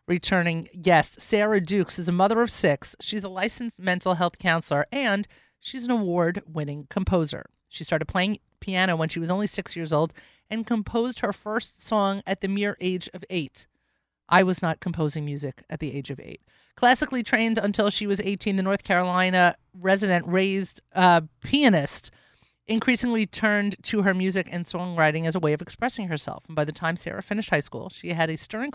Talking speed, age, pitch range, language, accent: 190 wpm, 30-49, 160-200 Hz, English, American